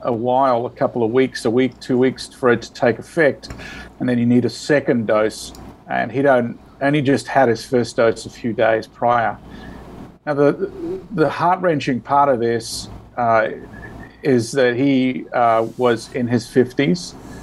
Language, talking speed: English, 185 wpm